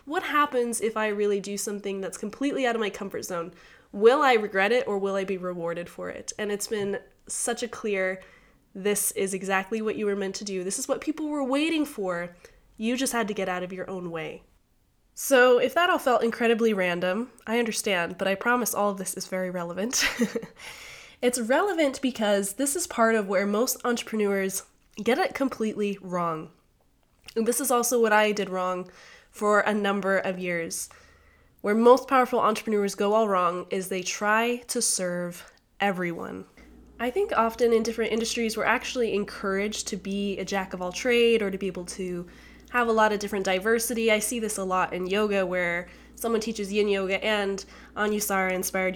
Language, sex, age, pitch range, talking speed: English, female, 20-39, 190-230 Hz, 190 wpm